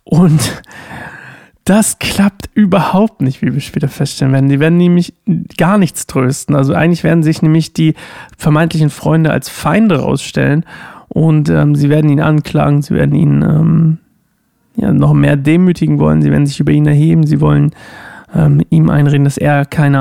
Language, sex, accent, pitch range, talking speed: German, male, German, 145-170 Hz, 170 wpm